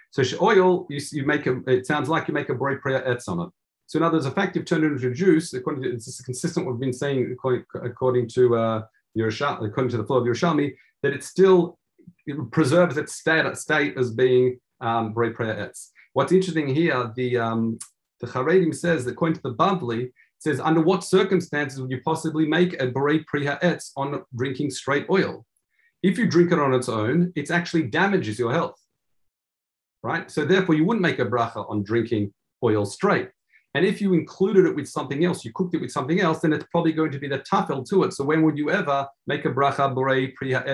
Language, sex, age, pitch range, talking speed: English, male, 40-59, 125-170 Hz, 215 wpm